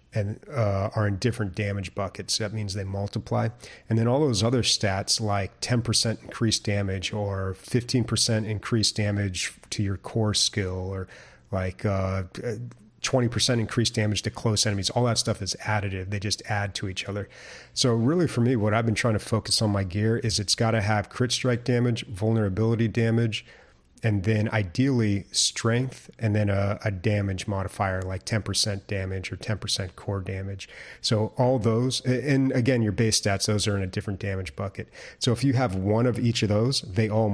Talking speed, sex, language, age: 190 wpm, male, English, 30-49